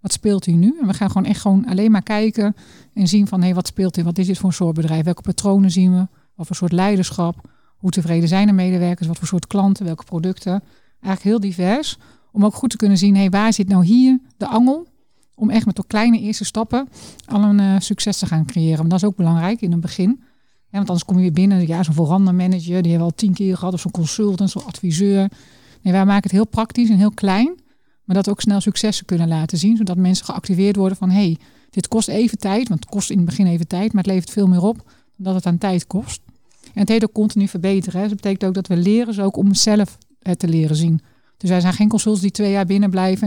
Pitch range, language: 180-205 Hz, Dutch